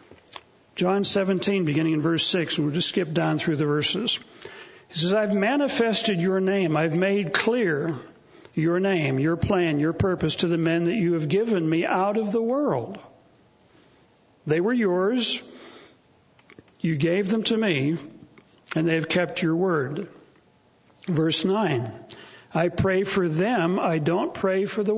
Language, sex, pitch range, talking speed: English, male, 160-195 Hz, 155 wpm